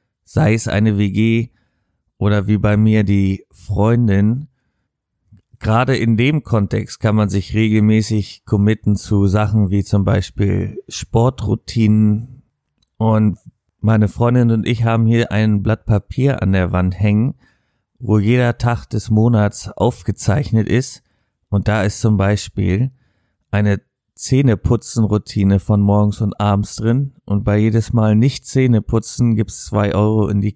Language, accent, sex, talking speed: German, German, male, 135 wpm